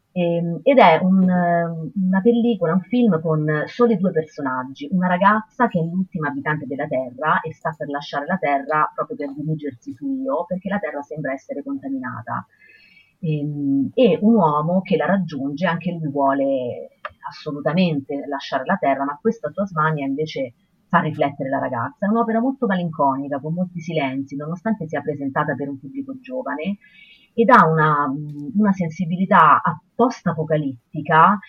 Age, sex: 30-49, female